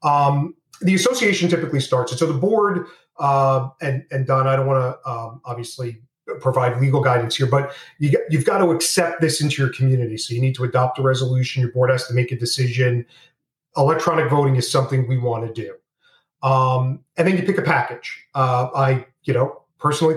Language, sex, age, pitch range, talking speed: English, male, 40-59, 130-155 Hz, 200 wpm